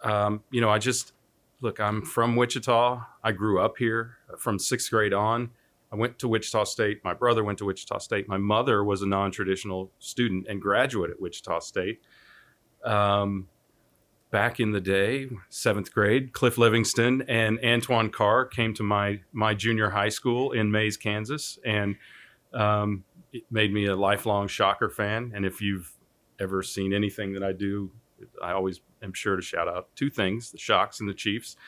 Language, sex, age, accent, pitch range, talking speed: English, male, 40-59, American, 100-115 Hz, 175 wpm